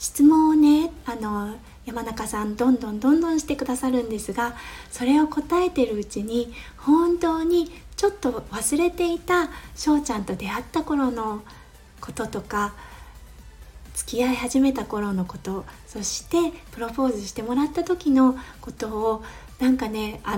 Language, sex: Japanese, female